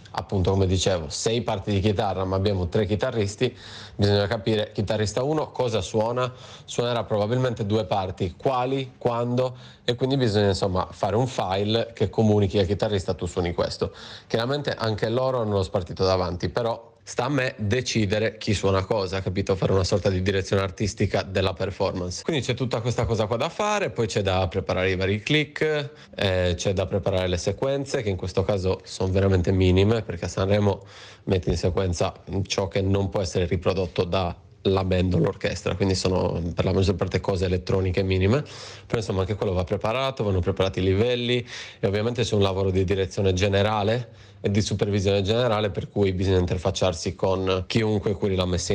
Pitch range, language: 95-115 Hz, Italian